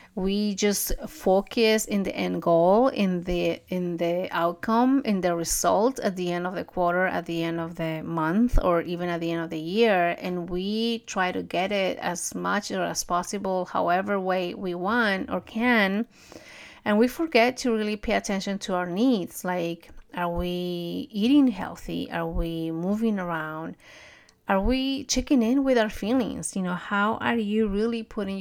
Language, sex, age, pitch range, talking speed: English, female, 30-49, 175-220 Hz, 180 wpm